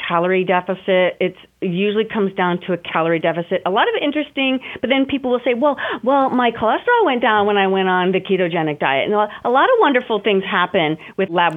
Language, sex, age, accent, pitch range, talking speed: English, female, 40-59, American, 170-215 Hz, 215 wpm